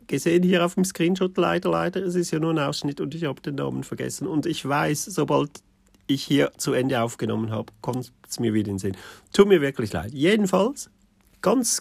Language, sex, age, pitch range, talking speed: German, male, 50-69, 110-170 Hz, 215 wpm